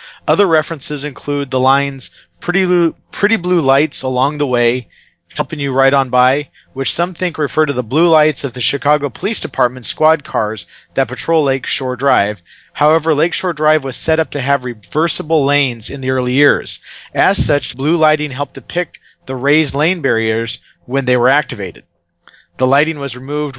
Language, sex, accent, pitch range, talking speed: English, male, American, 130-150 Hz, 185 wpm